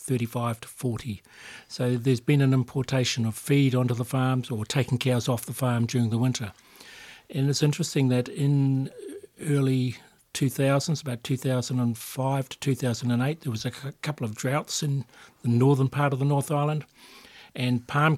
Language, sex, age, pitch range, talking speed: English, male, 60-79, 120-140 Hz, 160 wpm